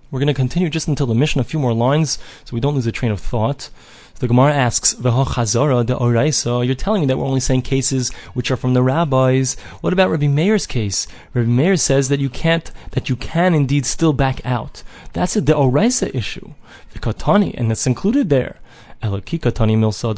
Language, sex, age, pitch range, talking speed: English, male, 20-39, 120-150 Hz, 195 wpm